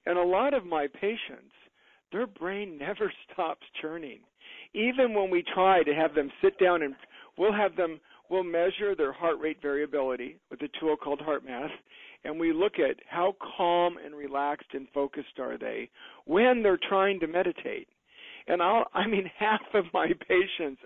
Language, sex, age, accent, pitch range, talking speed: English, male, 50-69, American, 160-240 Hz, 170 wpm